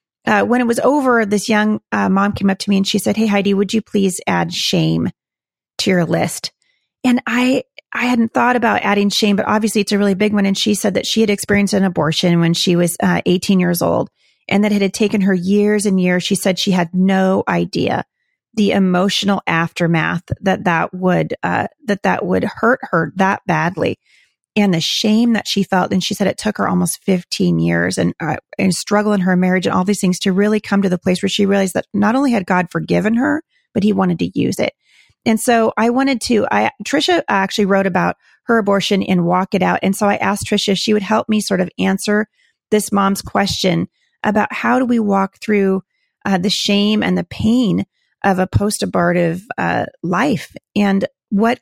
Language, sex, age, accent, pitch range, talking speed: English, female, 30-49, American, 185-215 Hz, 215 wpm